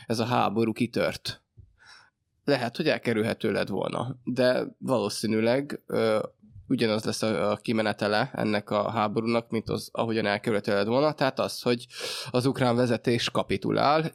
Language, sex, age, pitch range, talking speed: Hungarian, male, 20-39, 110-125 Hz, 130 wpm